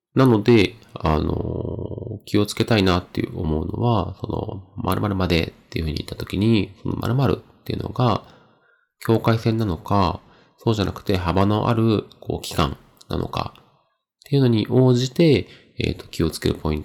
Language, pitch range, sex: Japanese, 95-120 Hz, male